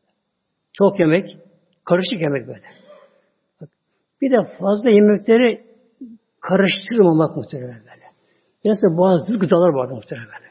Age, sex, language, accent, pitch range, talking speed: 60-79, male, Turkish, native, 170-230 Hz, 95 wpm